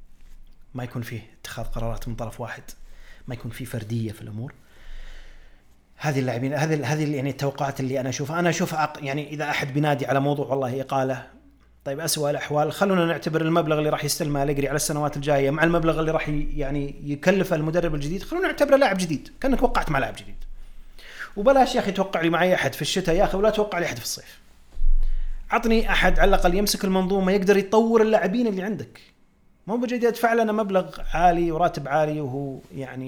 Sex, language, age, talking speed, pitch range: male, Arabic, 30-49, 180 wpm, 125-165 Hz